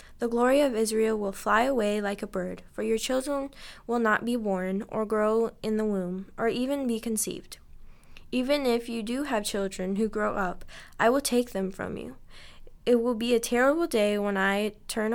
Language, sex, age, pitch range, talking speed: English, female, 10-29, 205-240 Hz, 200 wpm